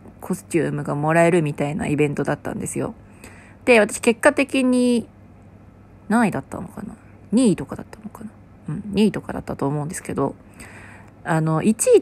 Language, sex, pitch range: Japanese, female, 140-220 Hz